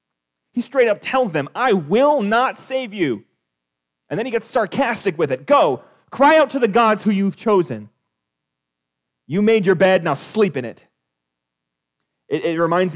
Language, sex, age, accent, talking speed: English, male, 30-49, American, 170 wpm